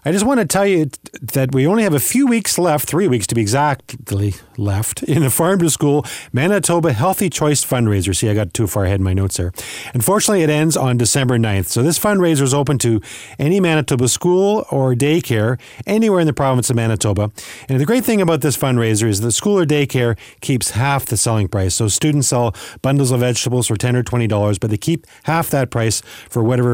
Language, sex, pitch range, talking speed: English, male, 110-155 Hz, 220 wpm